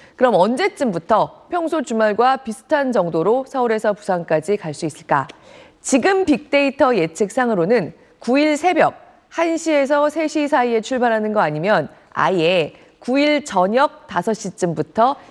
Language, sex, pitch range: Korean, female, 195-290 Hz